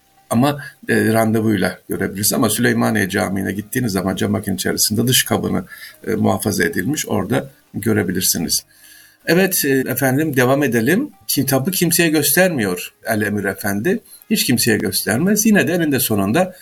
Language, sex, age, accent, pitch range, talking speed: Turkish, male, 60-79, native, 110-150 Hz, 125 wpm